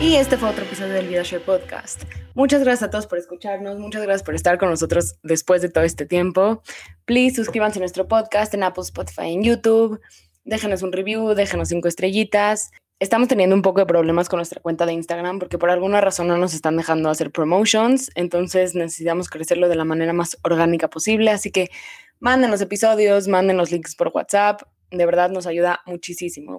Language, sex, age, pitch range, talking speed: Spanish, female, 20-39, 170-200 Hz, 195 wpm